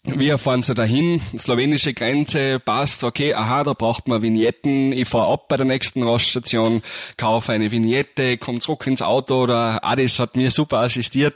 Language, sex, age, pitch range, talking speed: German, male, 30-49, 100-130 Hz, 175 wpm